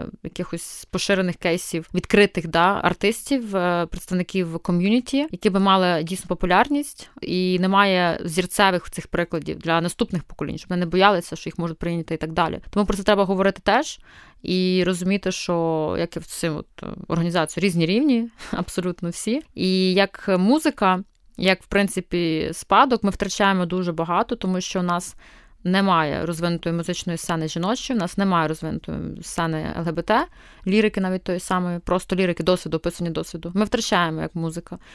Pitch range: 170-200 Hz